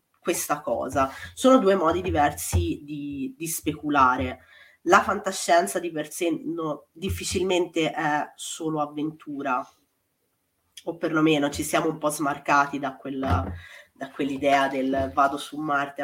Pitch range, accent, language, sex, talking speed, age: 145-190 Hz, native, Italian, female, 120 wpm, 20-39